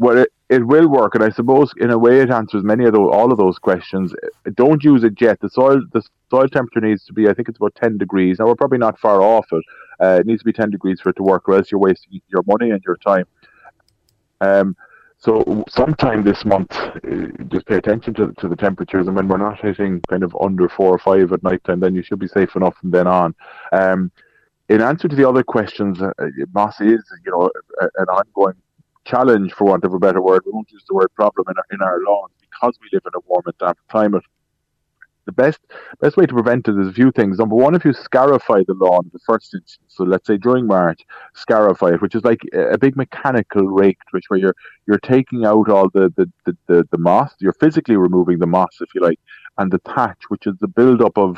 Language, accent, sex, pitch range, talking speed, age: English, Irish, male, 95-120 Hz, 240 wpm, 30-49